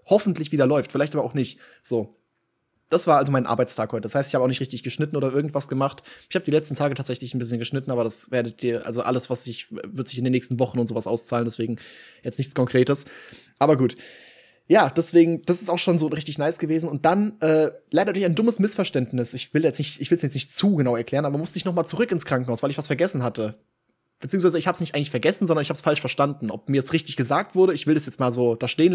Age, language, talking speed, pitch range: 20-39, German, 265 wpm, 130-170 Hz